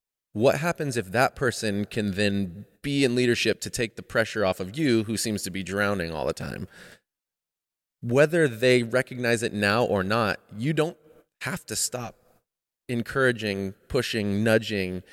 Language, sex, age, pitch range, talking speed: English, male, 30-49, 95-120 Hz, 160 wpm